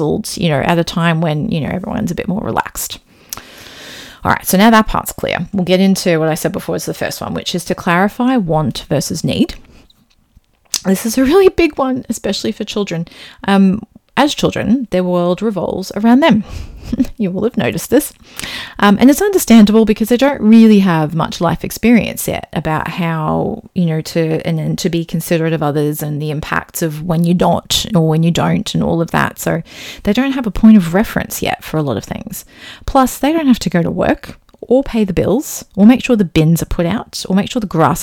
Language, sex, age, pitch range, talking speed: English, female, 30-49, 170-215 Hz, 220 wpm